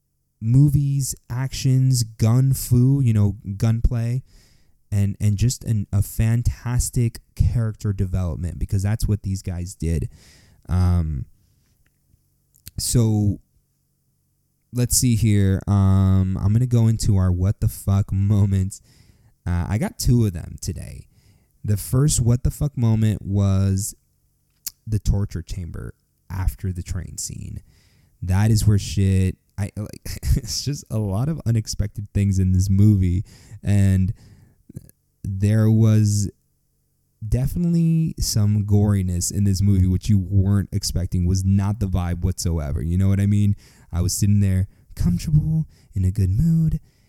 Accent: American